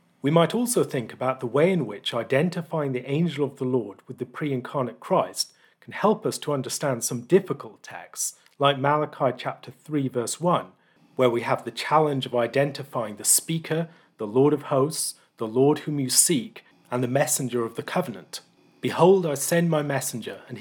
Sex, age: male, 40-59